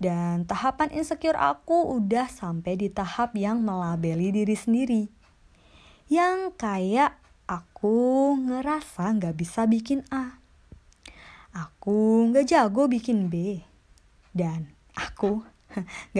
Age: 20-39